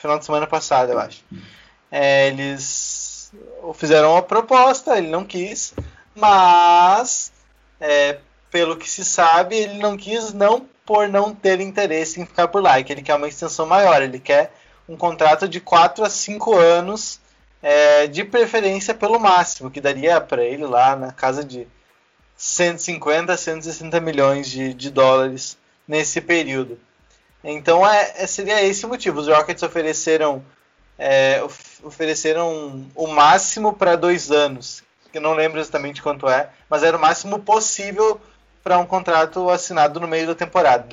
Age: 20-39